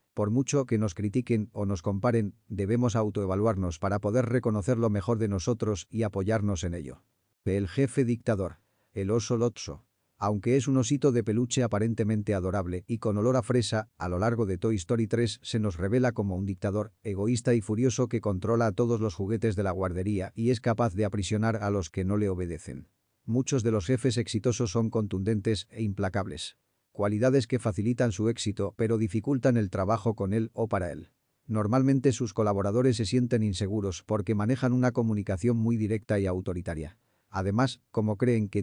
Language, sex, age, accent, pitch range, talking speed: Spanish, male, 40-59, Spanish, 100-120 Hz, 180 wpm